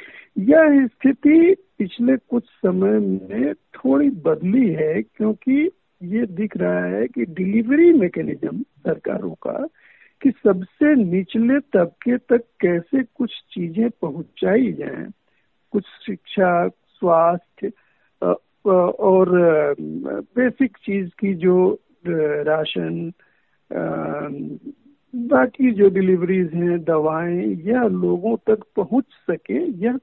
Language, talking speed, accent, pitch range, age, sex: Hindi, 100 wpm, native, 175-265 Hz, 50-69, male